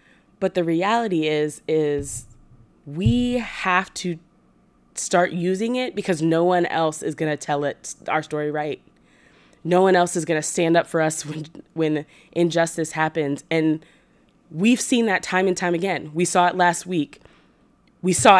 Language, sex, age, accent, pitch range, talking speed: English, female, 20-39, American, 165-215 Hz, 170 wpm